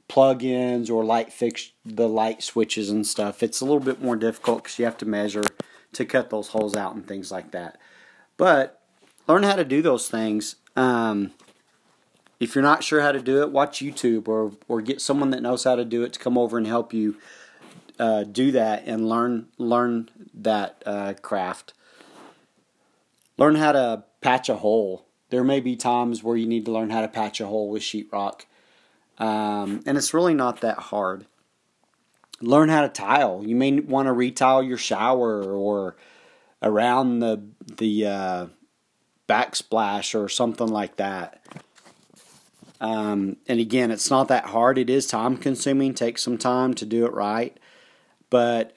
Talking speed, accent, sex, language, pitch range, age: 175 wpm, American, male, English, 110-130 Hz, 30-49